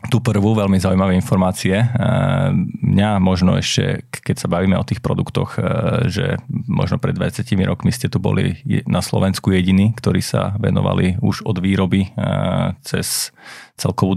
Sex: male